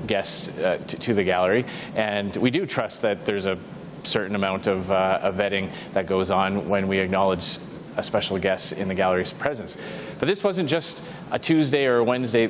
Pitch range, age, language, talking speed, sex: 110-145 Hz, 30-49, English, 195 wpm, male